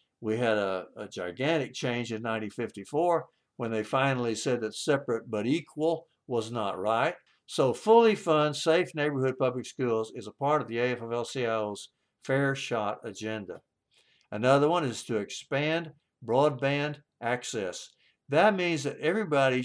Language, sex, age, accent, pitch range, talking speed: English, male, 60-79, American, 110-150 Hz, 140 wpm